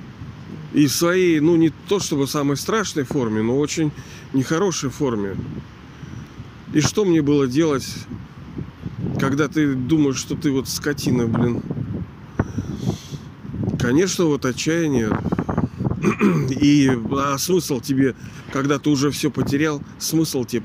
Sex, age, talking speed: male, 40-59, 120 wpm